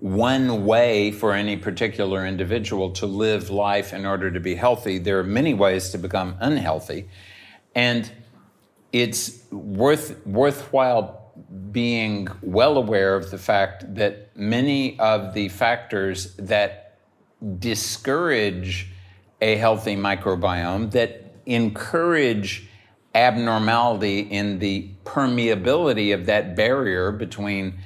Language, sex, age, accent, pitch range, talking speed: English, male, 60-79, American, 100-115 Hz, 110 wpm